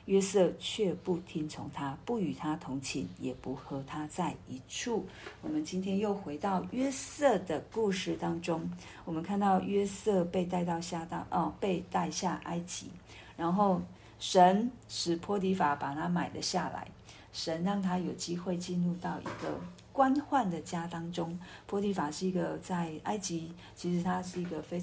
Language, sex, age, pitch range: Chinese, female, 50-69, 145-190 Hz